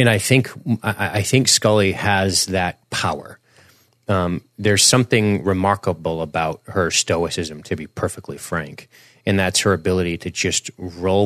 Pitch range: 90-110 Hz